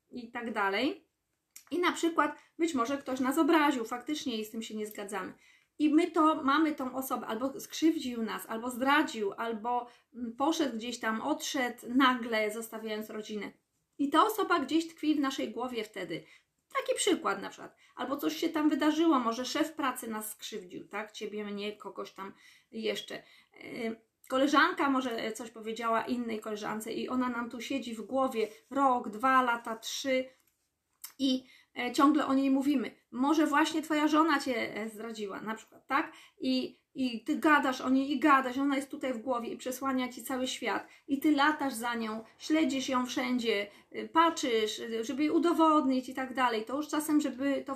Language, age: Polish, 20-39